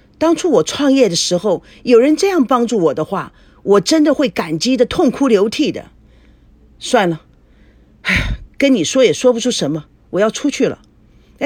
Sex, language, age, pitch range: female, Chinese, 50-69, 180-275 Hz